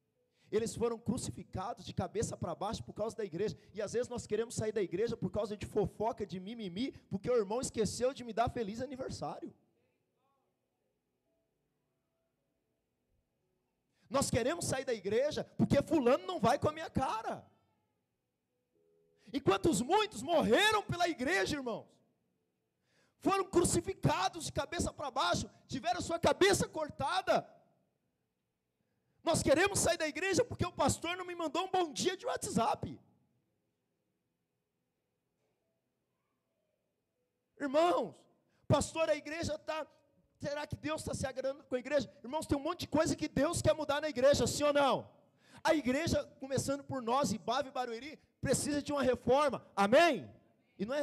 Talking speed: 145 wpm